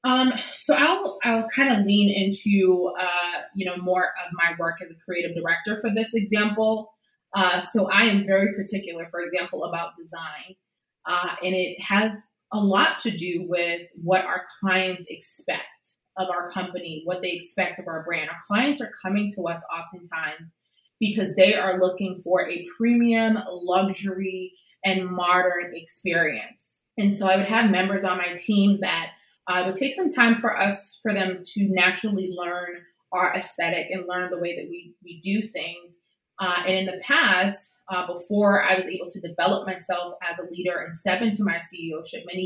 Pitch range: 180-205 Hz